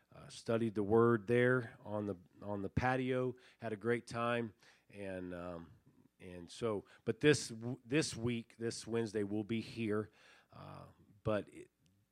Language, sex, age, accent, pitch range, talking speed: English, male, 40-59, American, 95-120 Hz, 145 wpm